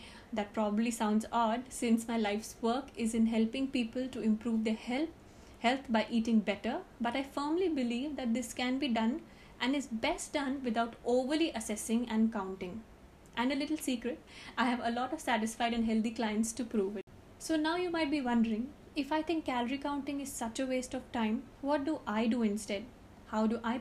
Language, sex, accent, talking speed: English, female, Indian, 200 wpm